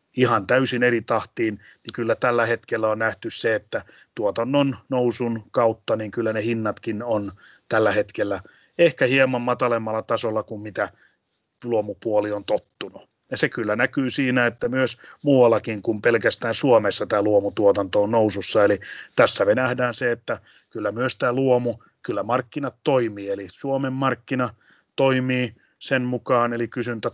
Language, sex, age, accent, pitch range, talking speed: Finnish, male, 30-49, native, 110-125 Hz, 150 wpm